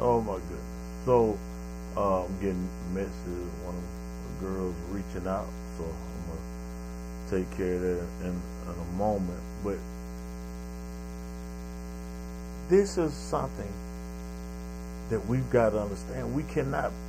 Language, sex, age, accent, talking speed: English, male, 50-69, American, 130 wpm